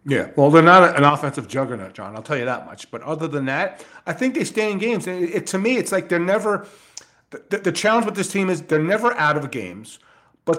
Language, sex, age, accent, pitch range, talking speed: English, male, 40-59, American, 135-170 Hz, 255 wpm